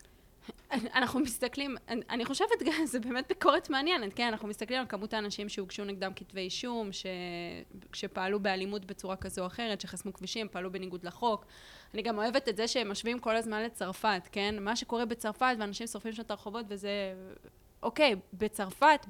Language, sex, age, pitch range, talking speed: English, female, 20-39, 195-245 Hz, 155 wpm